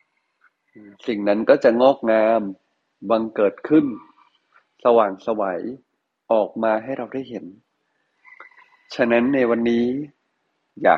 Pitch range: 110-140 Hz